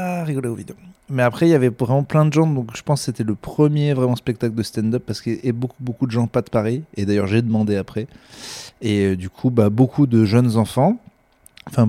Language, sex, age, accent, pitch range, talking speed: French, male, 20-39, French, 110-140 Hz, 240 wpm